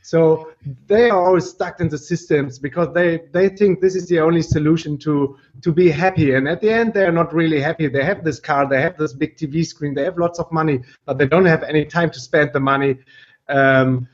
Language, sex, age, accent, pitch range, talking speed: English, male, 30-49, German, 135-170 Hz, 235 wpm